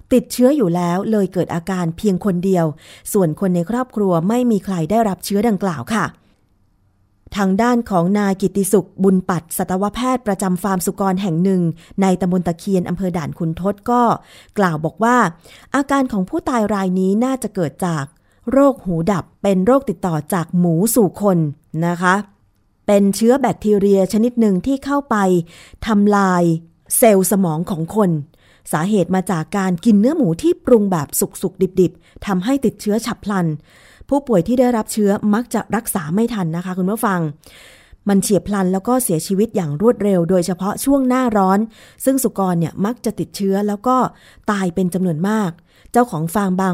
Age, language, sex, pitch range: 20-39, Thai, female, 175-220 Hz